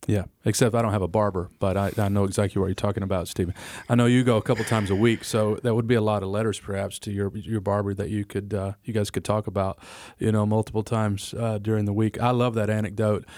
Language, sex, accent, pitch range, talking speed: English, male, American, 95-110 Hz, 270 wpm